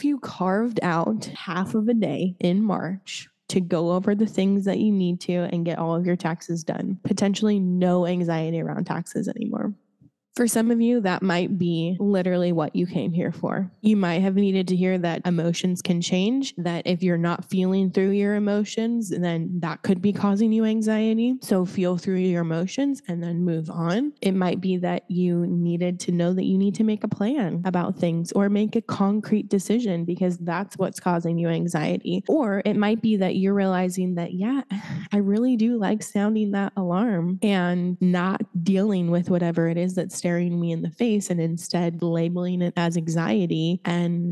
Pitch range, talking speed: 175-205 Hz, 190 wpm